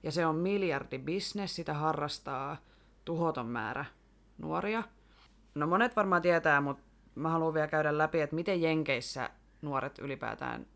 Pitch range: 130-160 Hz